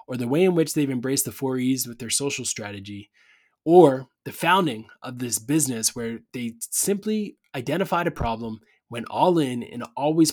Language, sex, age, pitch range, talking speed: English, male, 20-39, 115-145 Hz, 180 wpm